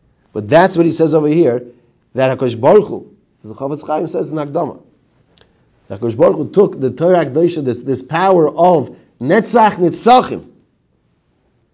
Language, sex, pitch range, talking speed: English, male, 130-185 Hz, 150 wpm